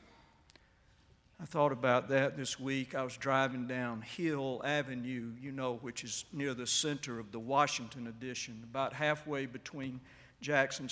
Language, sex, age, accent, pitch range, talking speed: English, male, 60-79, American, 120-140 Hz, 150 wpm